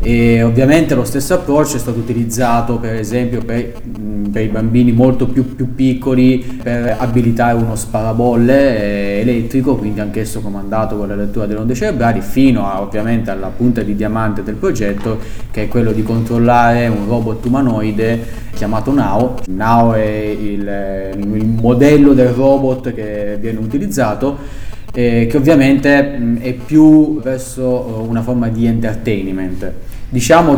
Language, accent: Italian, native